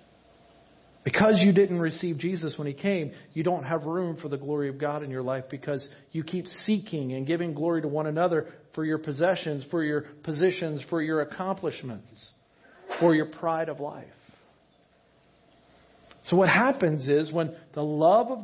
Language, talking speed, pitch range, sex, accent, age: English, 170 wpm, 140-180 Hz, male, American, 50-69